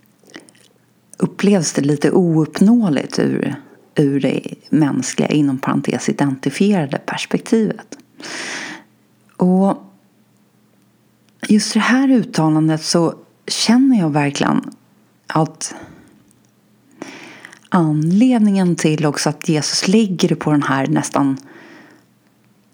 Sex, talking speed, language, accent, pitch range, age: female, 85 wpm, Swedish, native, 145-200 Hz, 30-49